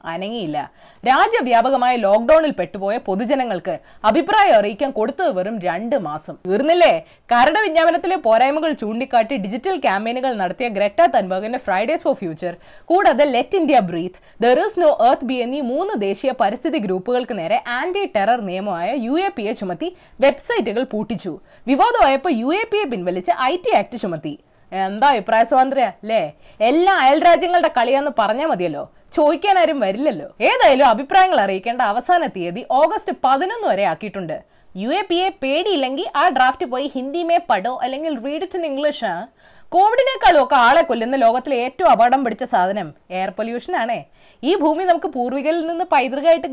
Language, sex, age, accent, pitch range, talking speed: Malayalam, female, 20-39, native, 225-335 Hz, 135 wpm